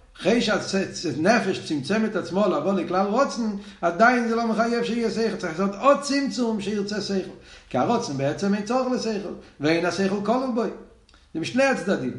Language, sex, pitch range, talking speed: Hebrew, male, 170-220 Hz, 160 wpm